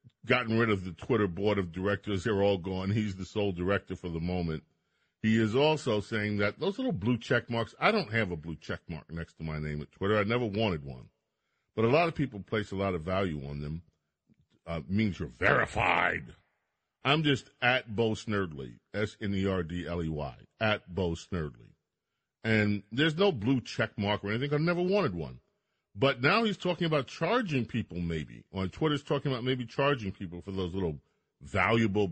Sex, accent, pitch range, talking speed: male, American, 90-125 Hz, 190 wpm